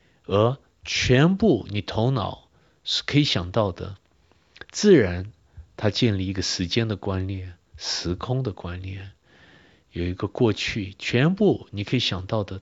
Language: Chinese